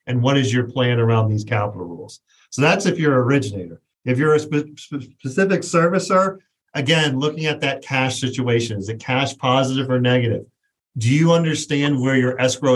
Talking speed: 185 wpm